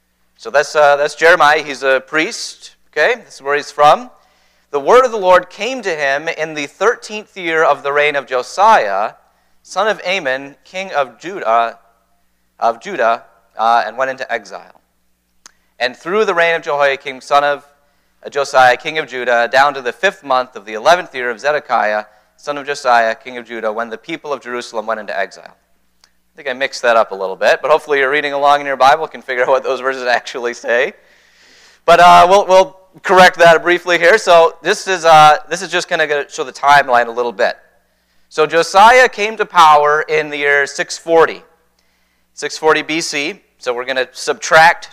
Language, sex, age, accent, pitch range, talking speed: English, male, 30-49, American, 120-165 Hz, 195 wpm